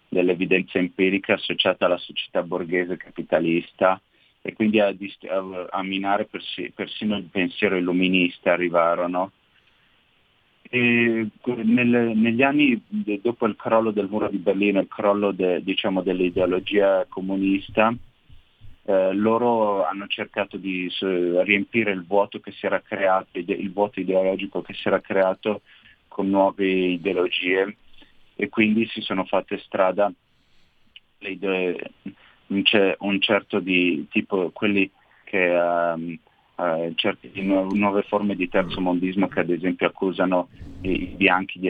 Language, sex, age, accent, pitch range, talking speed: Italian, male, 30-49, native, 90-100 Hz, 130 wpm